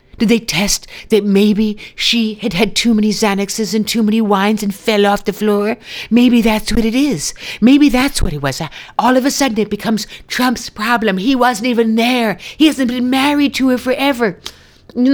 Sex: female